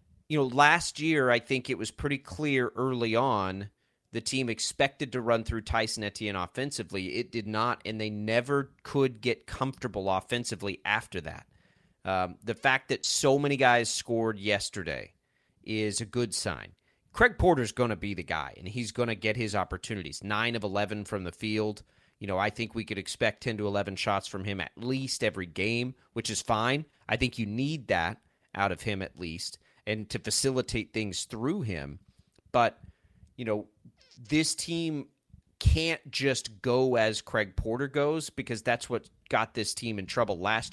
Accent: American